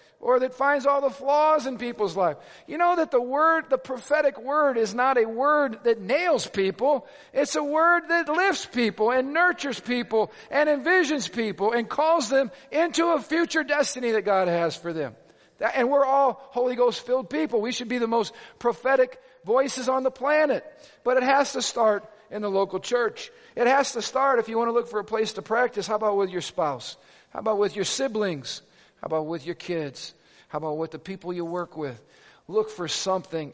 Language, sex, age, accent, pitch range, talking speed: English, male, 50-69, American, 195-275 Hz, 200 wpm